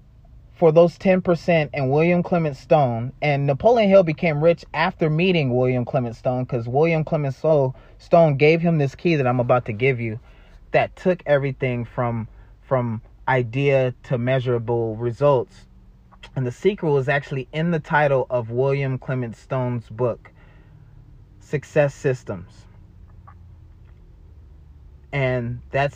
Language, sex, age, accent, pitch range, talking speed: English, male, 30-49, American, 105-135 Hz, 130 wpm